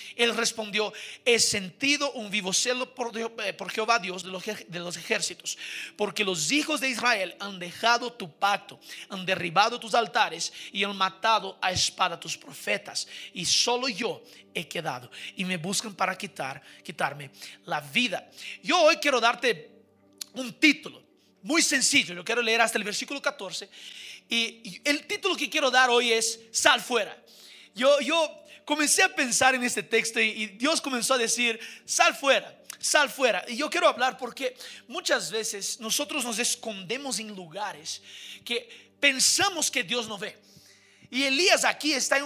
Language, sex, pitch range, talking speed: Spanish, male, 205-270 Hz, 160 wpm